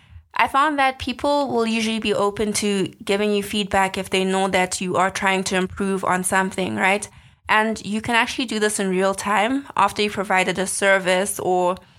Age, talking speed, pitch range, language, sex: 20-39, 195 wpm, 185-210 Hz, English, female